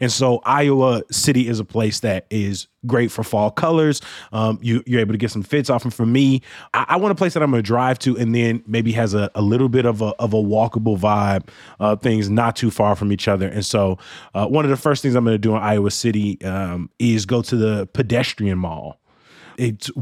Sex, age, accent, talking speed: male, 20-39, American, 245 wpm